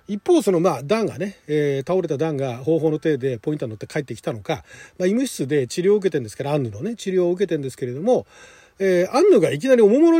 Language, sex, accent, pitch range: Japanese, male, native, 150-220 Hz